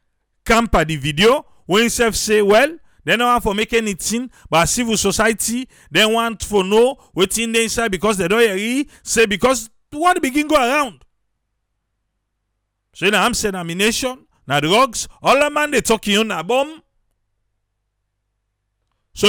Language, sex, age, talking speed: English, male, 50-69, 170 wpm